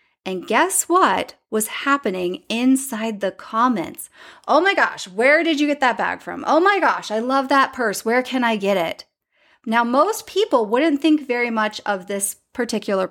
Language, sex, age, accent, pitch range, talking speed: English, female, 30-49, American, 200-280 Hz, 185 wpm